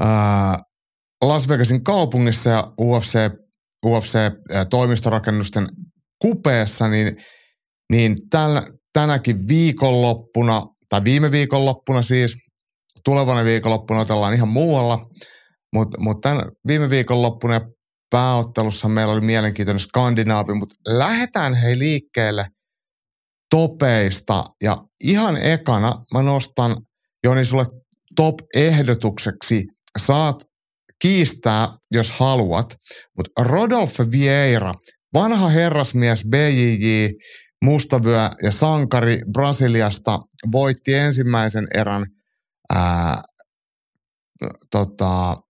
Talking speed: 85 wpm